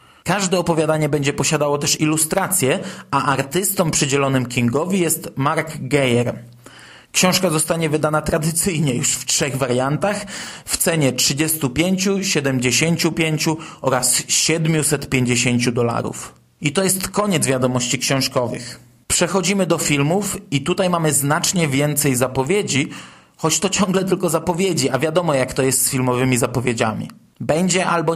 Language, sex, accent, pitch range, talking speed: Polish, male, native, 130-165 Hz, 125 wpm